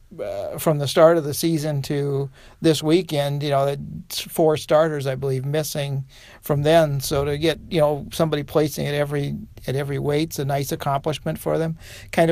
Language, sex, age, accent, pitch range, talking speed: English, male, 50-69, American, 135-155 Hz, 185 wpm